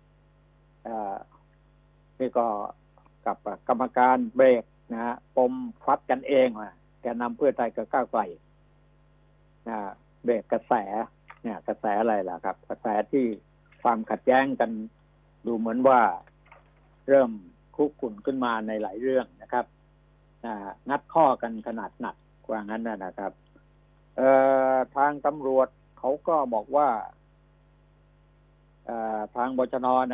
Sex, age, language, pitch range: male, 60-79, Thai, 110-125 Hz